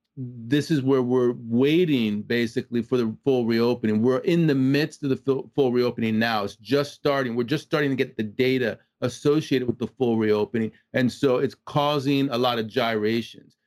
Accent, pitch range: American, 115-135 Hz